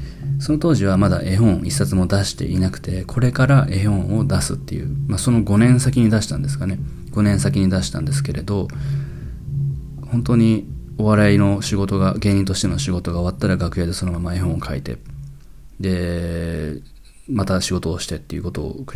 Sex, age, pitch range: male, 20-39, 90-120 Hz